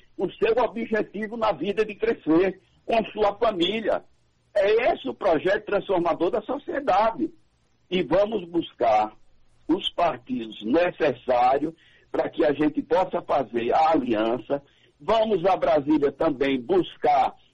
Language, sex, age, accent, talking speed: Portuguese, male, 60-79, Brazilian, 125 wpm